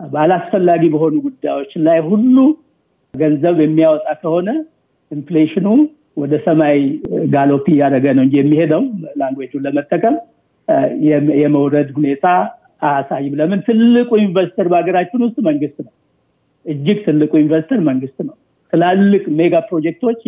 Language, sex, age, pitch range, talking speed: Amharic, male, 60-79, 150-185 Hz, 105 wpm